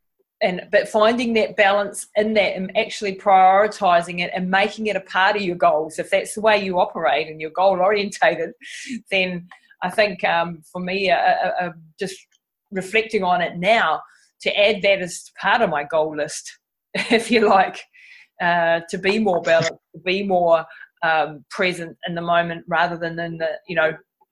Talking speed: 170 wpm